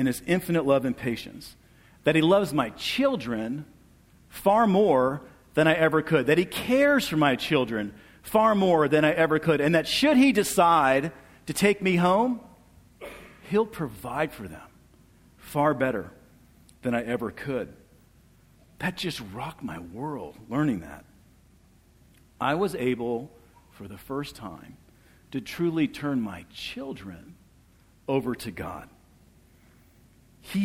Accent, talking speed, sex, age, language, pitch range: American, 140 wpm, male, 50-69, English, 105-160 Hz